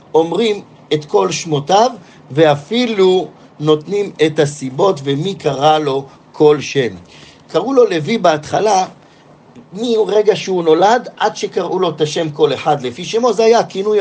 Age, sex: 50-69, male